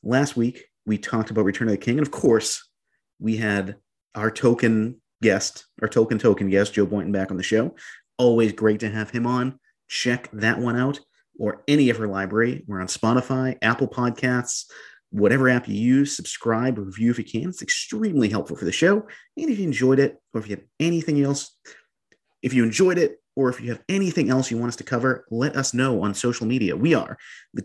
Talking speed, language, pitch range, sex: 210 wpm, English, 105-130 Hz, male